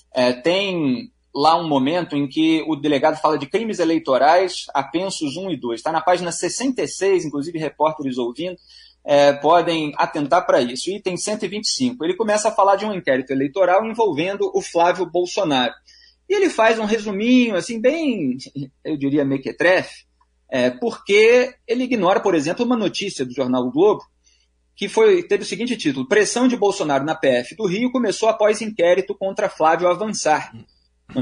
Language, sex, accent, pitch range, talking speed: Portuguese, male, Brazilian, 150-230 Hz, 160 wpm